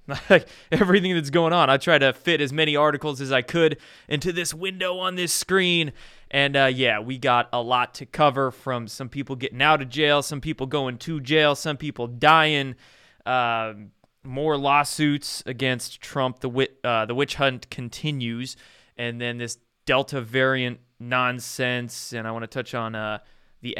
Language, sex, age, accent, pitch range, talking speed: English, male, 20-39, American, 120-145 Hz, 175 wpm